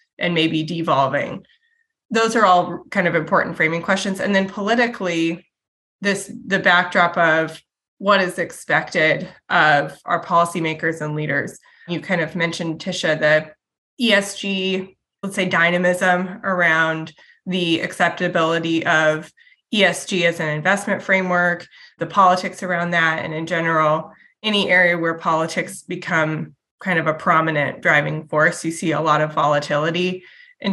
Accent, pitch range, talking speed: American, 160-195 Hz, 135 wpm